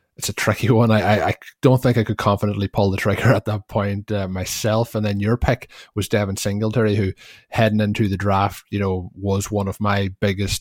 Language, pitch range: English, 95-105 Hz